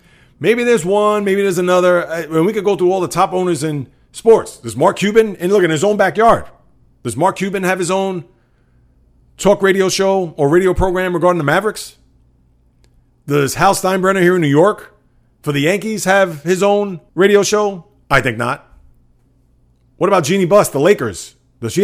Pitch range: 135-190 Hz